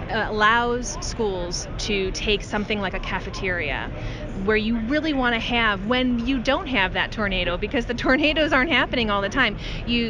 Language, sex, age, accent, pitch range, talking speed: English, female, 20-39, American, 195-230 Hz, 170 wpm